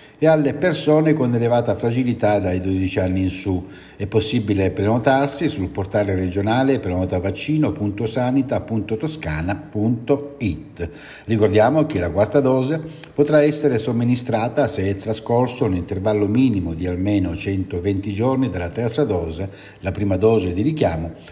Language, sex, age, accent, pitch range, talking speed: Italian, male, 60-79, native, 100-140 Hz, 125 wpm